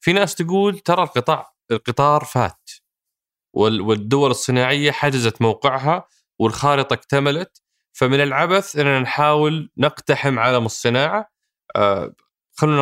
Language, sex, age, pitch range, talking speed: Arabic, male, 20-39, 115-150 Hz, 100 wpm